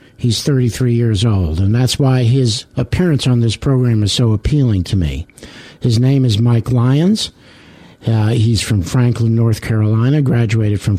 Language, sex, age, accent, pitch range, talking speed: English, male, 60-79, American, 115-140 Hz, 165 wpm